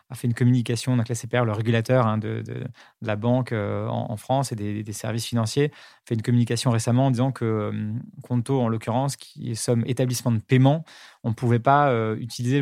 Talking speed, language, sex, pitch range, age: 235 wpm, French, male, 120-145 Hz, 20-39